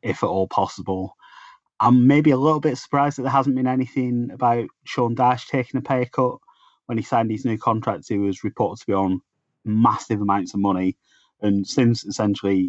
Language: English